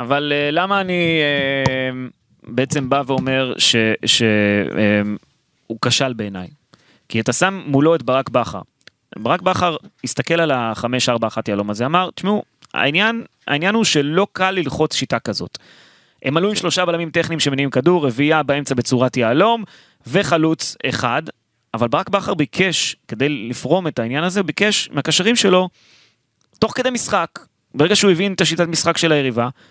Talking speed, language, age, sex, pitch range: 145 wpm, Hebrew, 20-39, male, 125-175 Hz